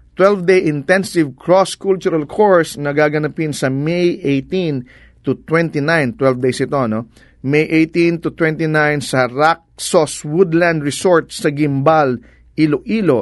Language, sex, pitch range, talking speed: English, male, 135-180 Hz, 120 wpm